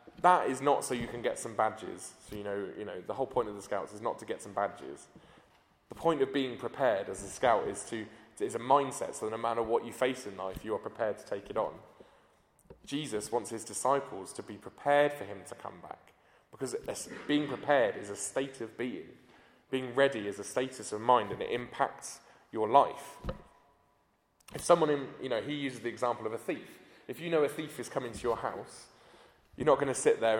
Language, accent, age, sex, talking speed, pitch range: English, British, 20-39, male, 230 wpm, 110-145 Hz